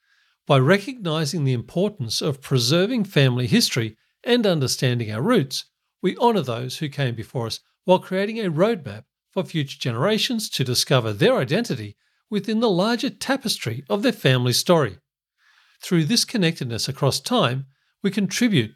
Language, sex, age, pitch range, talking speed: English, male, 50-69, 135-205 Hz, 145 wpm